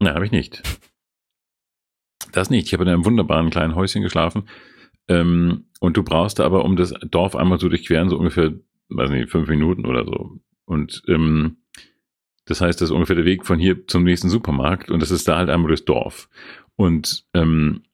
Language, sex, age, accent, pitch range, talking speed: German, male, 40-59, German, 80-95 Hz, 195 wpm